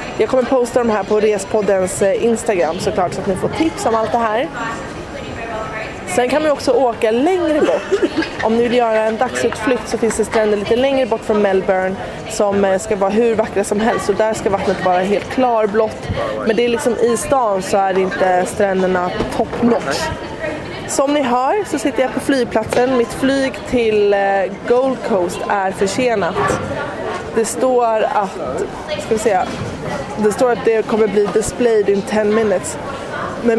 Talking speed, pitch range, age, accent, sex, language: 180 wpm, 200-245 Hz, 20-39, native, female, Swedish